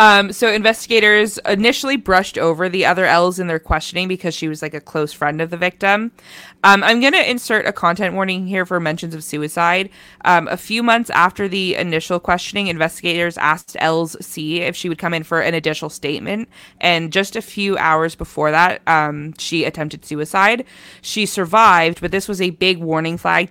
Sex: female